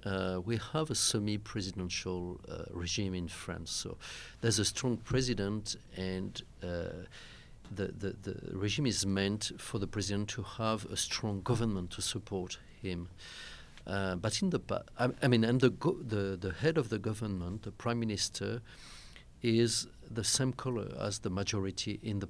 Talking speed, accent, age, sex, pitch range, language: 165 wpm, French, 40-59, male, 95-120 Hz, English